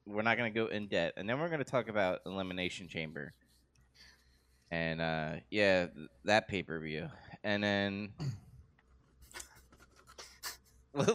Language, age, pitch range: English, 20-39, 85-110 Hz